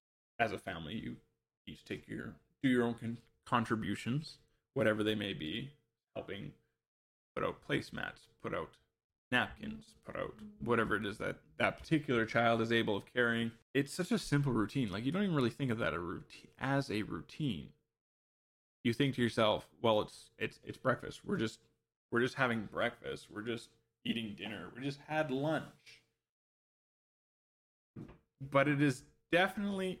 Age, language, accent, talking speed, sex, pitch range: 20-39, English, American, 165 wpm, male, 115-140 Hz